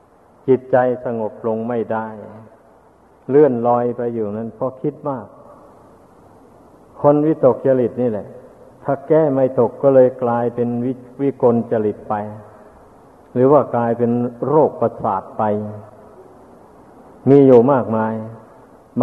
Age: 60-79